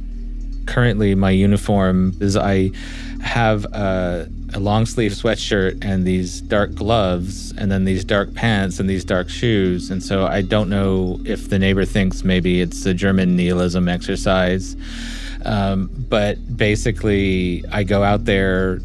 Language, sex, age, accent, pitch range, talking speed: English, male, 30-49, American, 90-105 Hz, 145 wpm